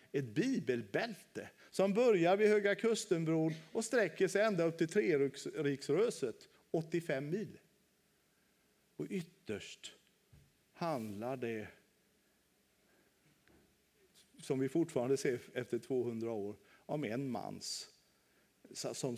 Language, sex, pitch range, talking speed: Swedish, male, 145-190 Hz, 100 wpm